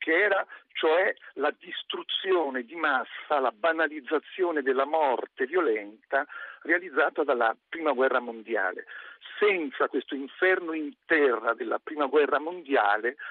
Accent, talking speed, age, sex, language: native, 115 wpm, 50-69, male, Italian